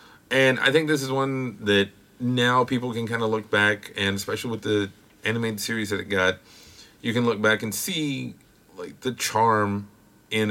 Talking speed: 190 wpm